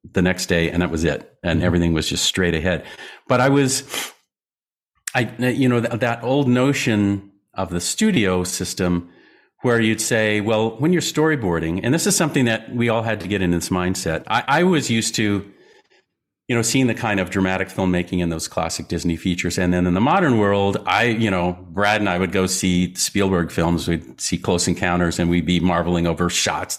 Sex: male